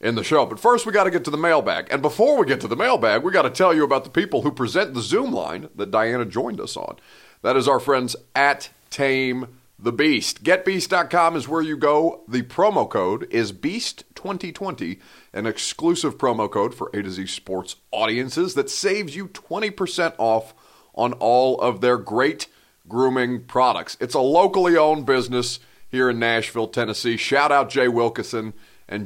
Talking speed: 190 wpm